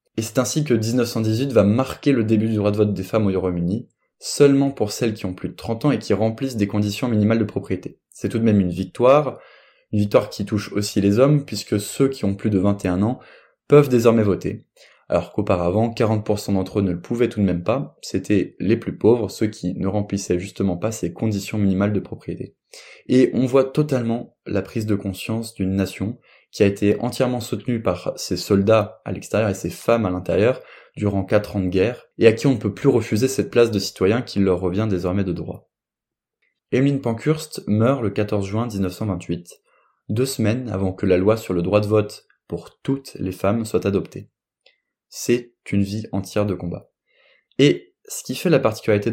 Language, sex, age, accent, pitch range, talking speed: French, male, 20-39, French, 100-120 Hz, 210 wpm